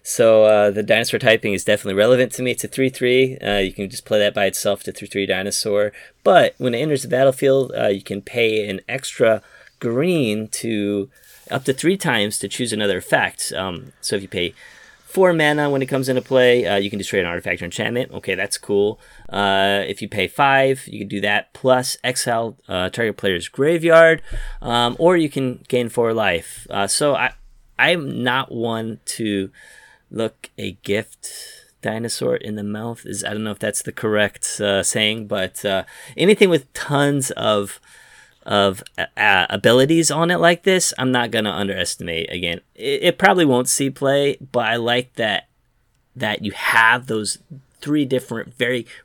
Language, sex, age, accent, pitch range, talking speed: English, male, 30-49, American, 100-130 Hz, 190 wpm